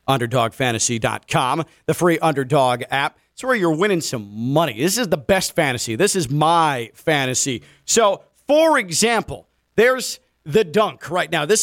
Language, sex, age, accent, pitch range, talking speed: English, male, 40-59, American, 165-215 Hz, 150 wpm